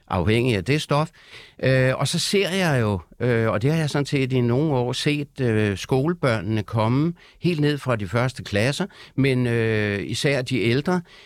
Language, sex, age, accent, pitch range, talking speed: Danish, male, 60-79, native, 115-155 Hz, 185 wpm